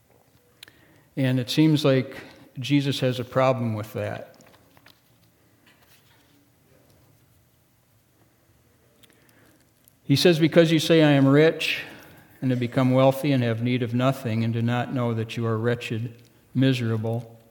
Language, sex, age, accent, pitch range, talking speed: English, male, 60-79, American, 115-135 Hz, 125 wpm